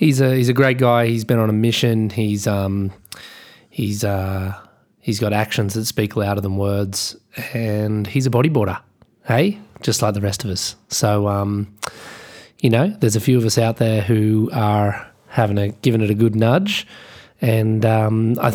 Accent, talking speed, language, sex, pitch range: Australian, 185 wpm, English, male, 110-130 Hz